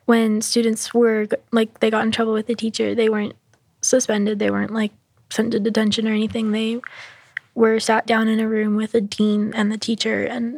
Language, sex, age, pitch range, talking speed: English, female, 10-29, 210-230 Hz, 205 wpm